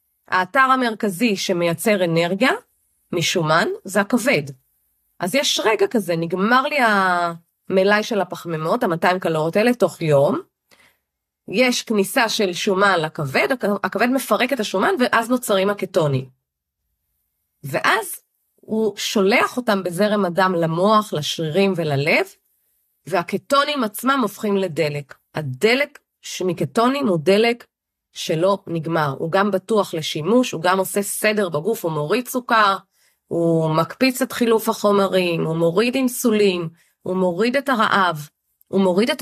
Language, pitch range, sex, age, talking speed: Hebrew, 165-215 Hz, female, 30-49, 120 wpm